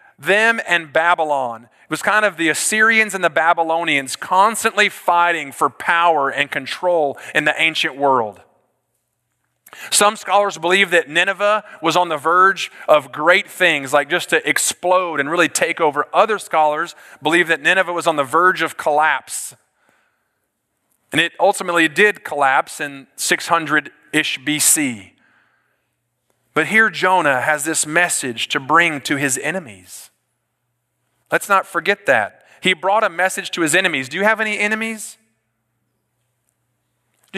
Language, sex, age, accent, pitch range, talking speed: English, male, 30-49, American, 140-195 Hz, 145 wpm